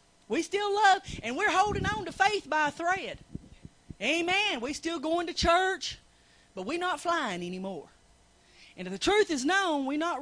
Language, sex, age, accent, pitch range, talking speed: English, female, 30-49, American, 195-310 Hz, 180 wpm